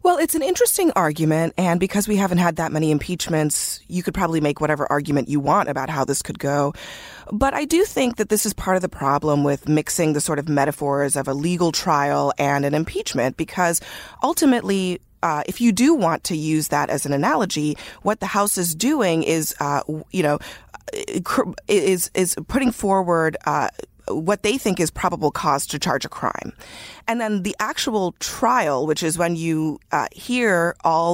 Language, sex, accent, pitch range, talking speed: English, female, American, 150-200 Hz, 190 wpm